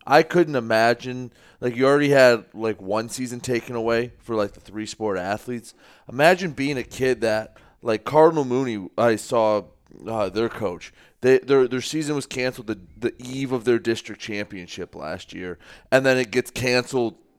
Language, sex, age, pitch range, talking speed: English, male, 30-49, 110-140 Hz, 180 wpm